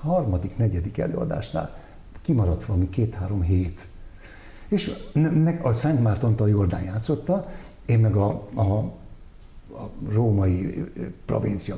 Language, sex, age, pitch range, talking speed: Hungarian, male, 60-79, 100-150 Hz, 95 wpm